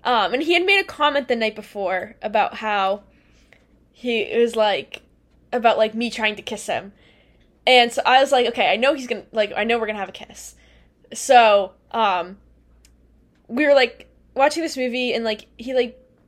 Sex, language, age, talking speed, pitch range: female, English, 10-29, 195 wpm, 215-255 Hz